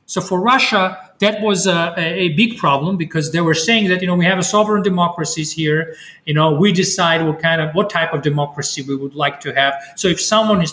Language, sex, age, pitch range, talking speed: Finnish, male, 30-49, 140-185 Hz, 235 wpm